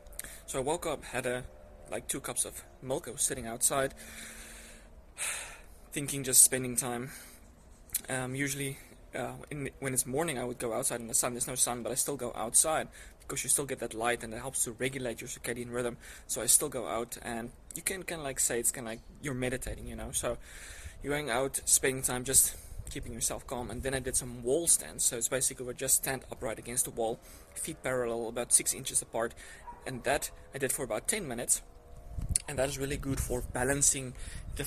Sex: male